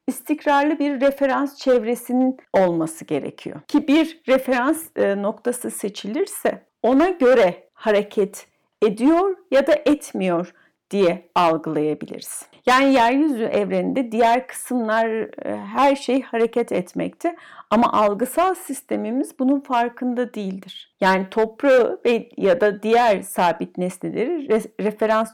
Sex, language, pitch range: female, Turkish, 205-275 Hz